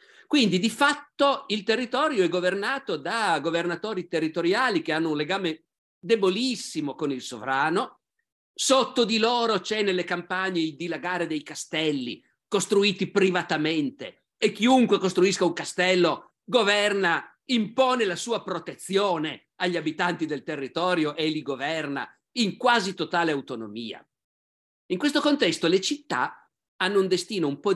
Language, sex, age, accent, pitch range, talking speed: Italian, male, 50-69, native, 155-210 Hz, 130 wpm